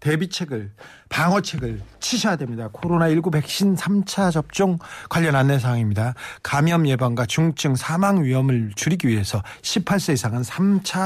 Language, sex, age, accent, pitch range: Korean, male, 40-59, native, 135-185 Hz